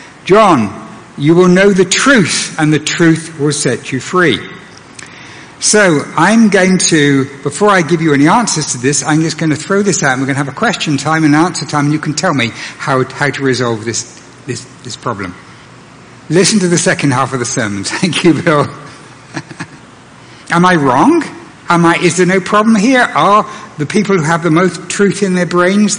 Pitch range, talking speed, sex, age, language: 135-180 Hz, 205 wpm, male, 60-79, English